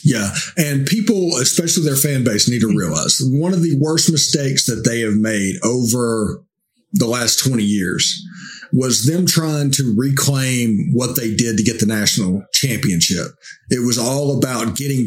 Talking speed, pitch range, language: 165 wpm, 115-150 Hz, English